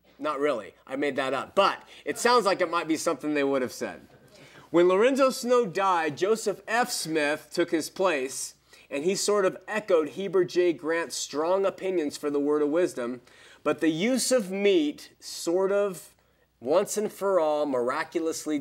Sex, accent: male, American